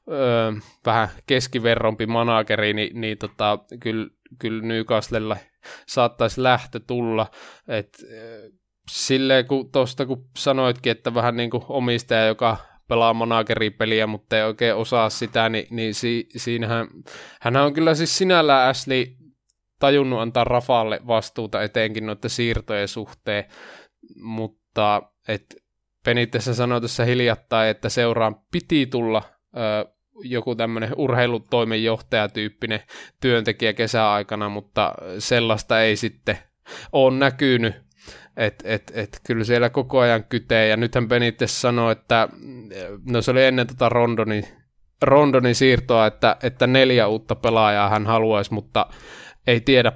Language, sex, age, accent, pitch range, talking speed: Finnish, male, 20-39, native, 110-120 Hz, 125 wpm